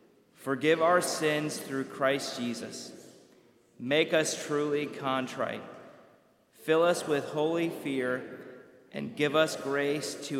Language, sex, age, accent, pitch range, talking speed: English, male, 40-59, American, 120-140 Hz, 115 wpm